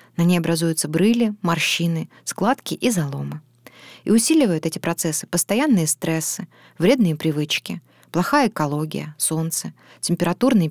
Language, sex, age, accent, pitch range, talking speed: Russian, female, 20-39, native, 160-205 Hz, 110 wpm